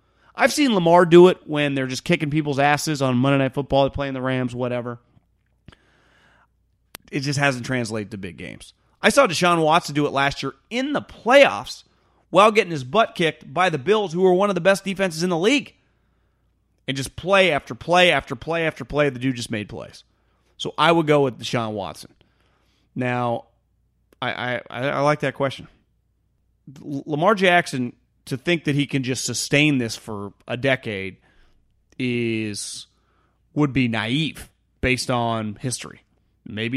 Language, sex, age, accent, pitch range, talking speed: English, male, 30-49, American, 115-160 Hz, 170 wpm